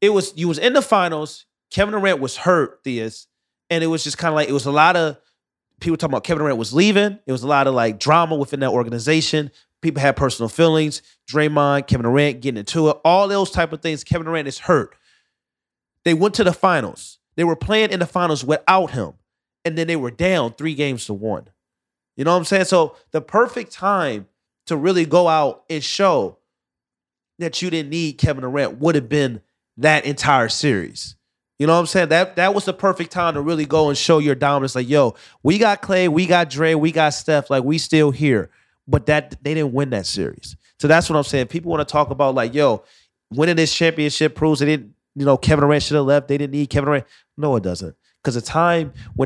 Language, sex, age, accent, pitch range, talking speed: English, male, 30-49, American, 140-170 Hz, 225 wpm